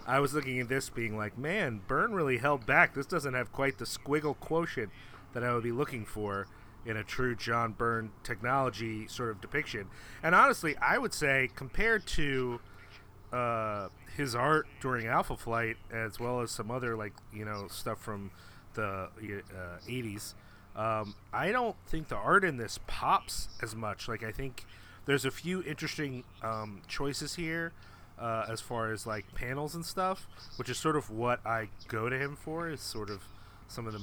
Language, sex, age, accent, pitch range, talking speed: English, male, 30-49, American, 105-140 Hz, 185 wpm